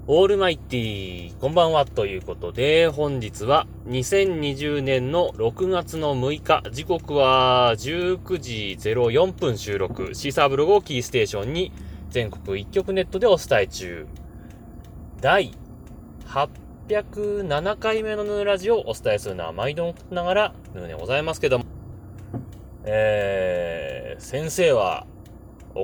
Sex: male